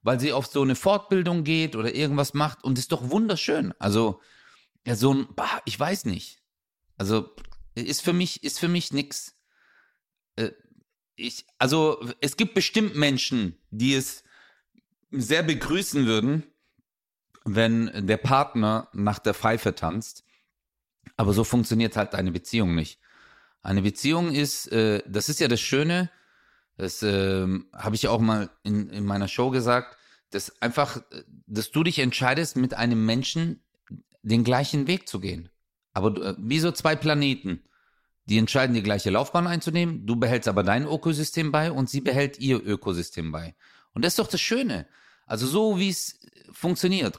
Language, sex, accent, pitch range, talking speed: English, male, German, 110-160 Hz, 160 wpm